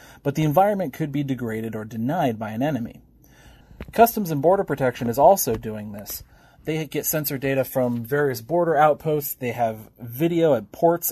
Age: 30-49